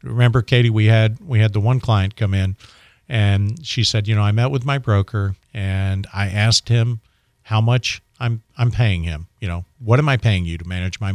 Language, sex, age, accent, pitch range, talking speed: English, male, 50-69, American, 100-120 Hz, 220 wpm